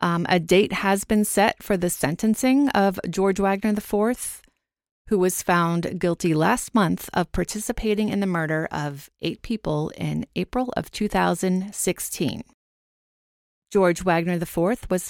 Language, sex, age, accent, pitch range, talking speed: English, female, 30-49, American, 165-205 Hz, 140 wpm